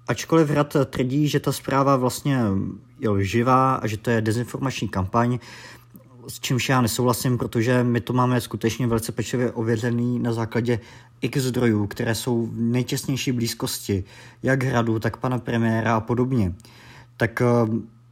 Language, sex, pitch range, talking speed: Czech, male, 115-125 Hz, 145 wpm